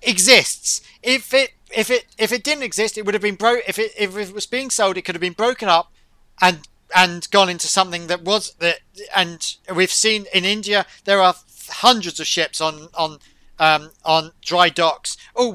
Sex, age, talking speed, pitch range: male, 40-59, 200 wpm, 175-230 Hz